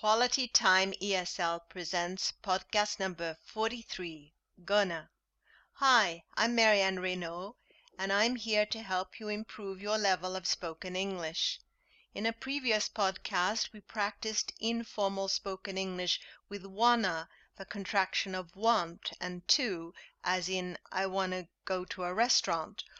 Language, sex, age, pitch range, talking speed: English, female, 40-59, 180-220 Hz, 130 wpm